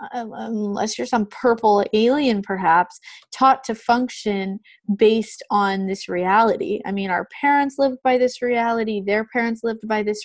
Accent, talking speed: American, 150 wpm